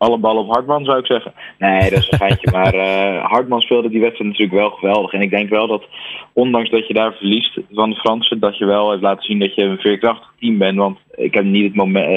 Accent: Dutch